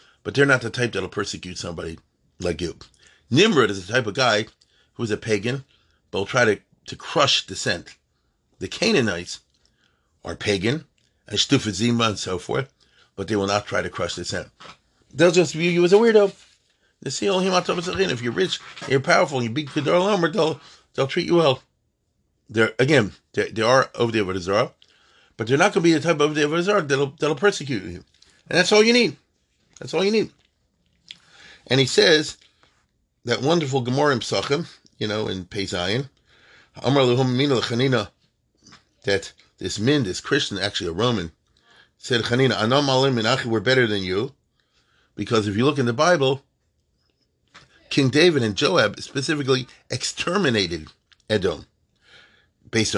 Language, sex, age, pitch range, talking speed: English, male, 40-59, 105-150 Hz, 160 wpm